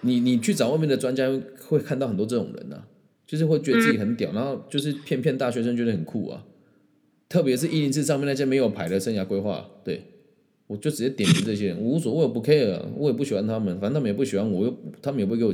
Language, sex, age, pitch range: Chinese, male, 20-39, 105-160 Hz